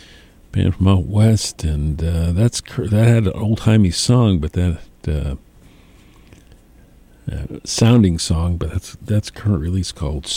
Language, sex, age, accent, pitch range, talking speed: English, male, 50-69, American, 85-115 Hz, 145 wpm